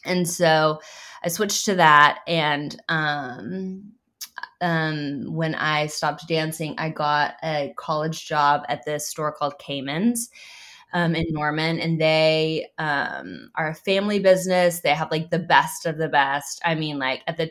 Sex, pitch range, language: female, 155-175 Hz, English